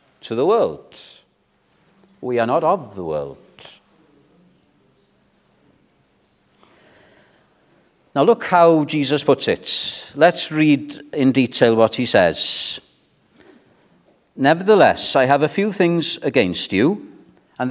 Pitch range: 135-180 Hz